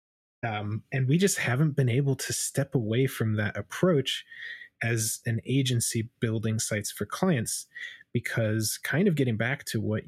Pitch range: 105-135 Hz